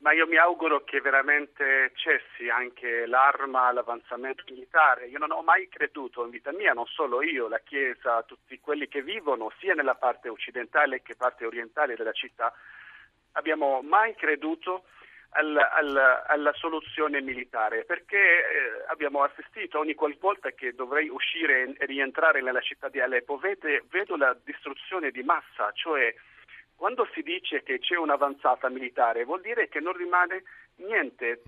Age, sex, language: 50-69, male, Italian